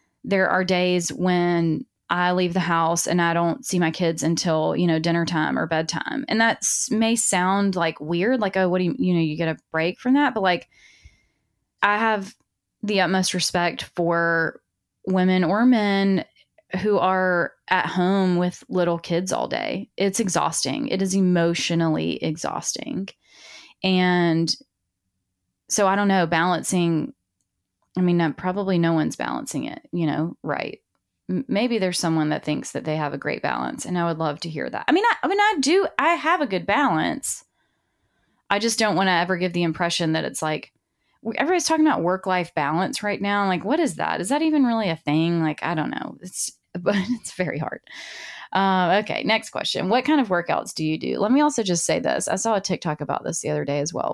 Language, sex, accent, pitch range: English, female, American, 165-200 Hz